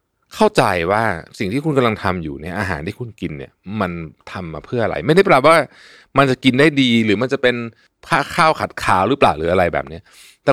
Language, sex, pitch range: Thai, male, 85-135 Hz